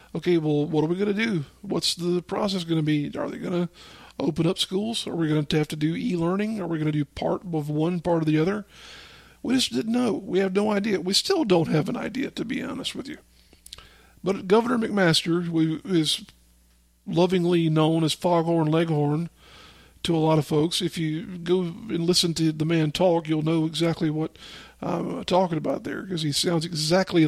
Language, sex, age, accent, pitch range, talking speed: English, male, 50-69, American, 160-185 Hz, 210 wpm